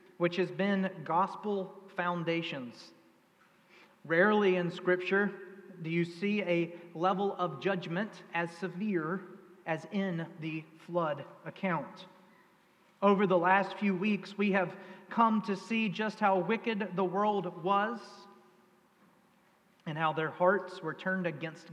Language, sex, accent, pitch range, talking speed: English, male, American, 175-200 Hz, 125 wpm